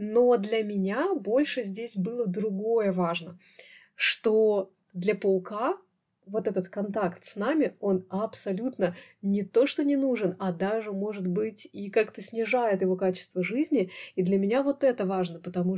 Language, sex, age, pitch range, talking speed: Russian, female, 30-49, 185-250 Hz, 150 wpm